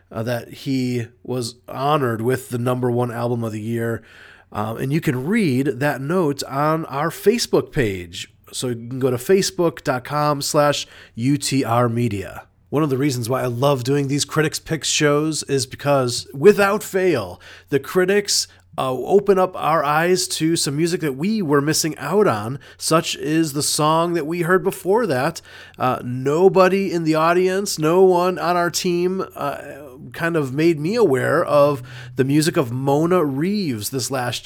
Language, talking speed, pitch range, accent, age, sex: English, 170 wpm, 125-160 Hz, American, 30-49, male